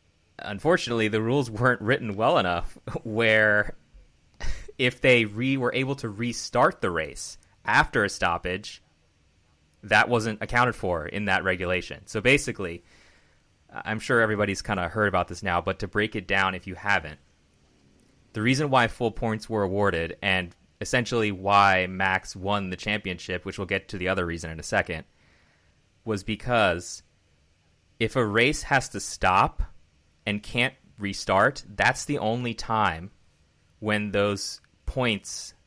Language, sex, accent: English, male, American